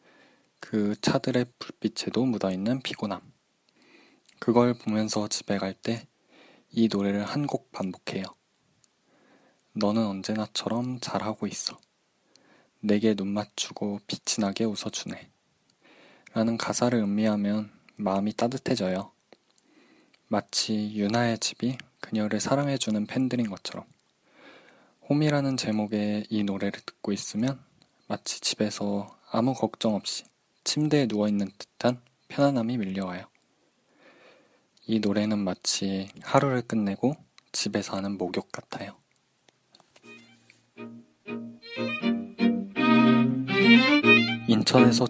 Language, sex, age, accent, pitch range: Korean, male, 20-39, native, 100-125 Hz